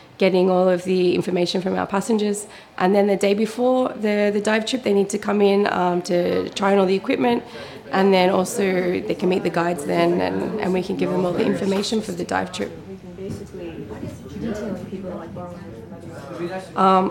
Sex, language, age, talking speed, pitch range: female, English, 20-39, 180 wpm, 185-215 Hz